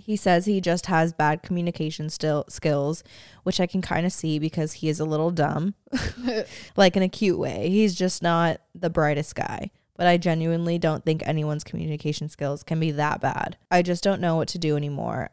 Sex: female